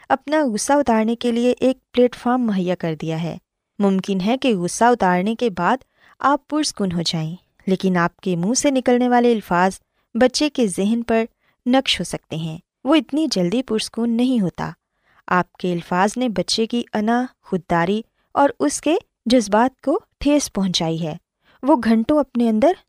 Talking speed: 110 wpm